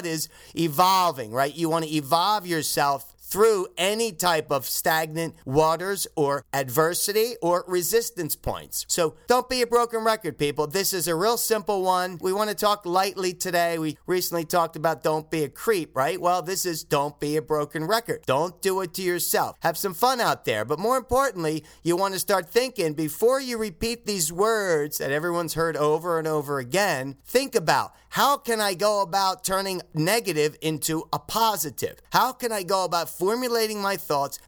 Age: 40-59